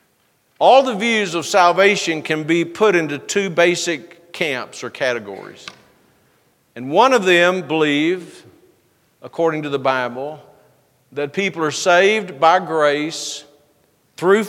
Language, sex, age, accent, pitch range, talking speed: English, male, 50-69, American, 155-195 Hz, 125 wpm